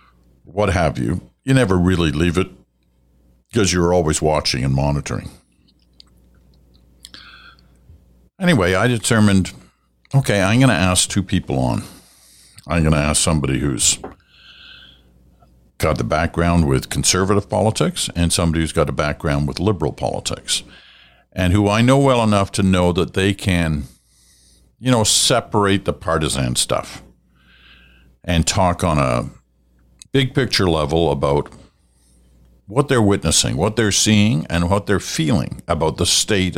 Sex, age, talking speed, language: male, 60-79, 140 wpm, English